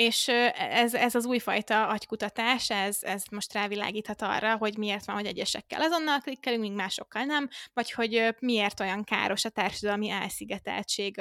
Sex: female